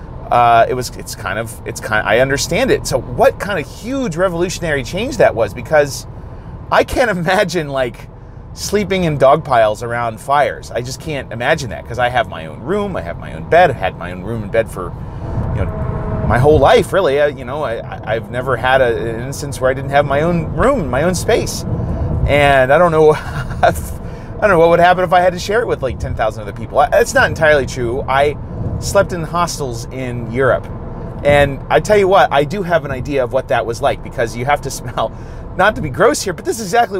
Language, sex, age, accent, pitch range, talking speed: English, male, 30-49, American, 120-160 Hz, 235 wpm